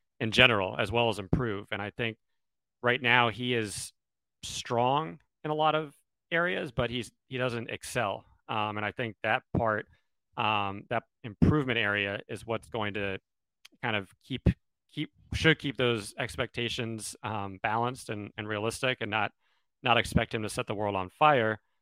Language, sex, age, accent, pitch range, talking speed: English, male, 30-49, American, 100-120 Hz, 170 wpm